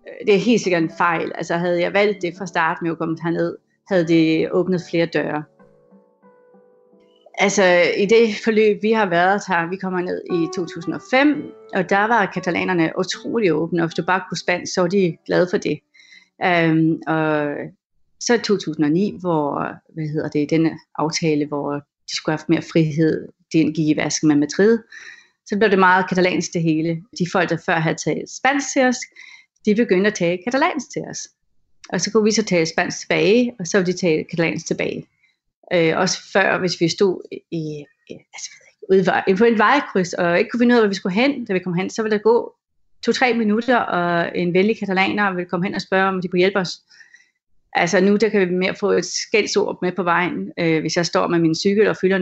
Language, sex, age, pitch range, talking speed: Danish, female, 30-49, 165-210 Hz, 200 wpm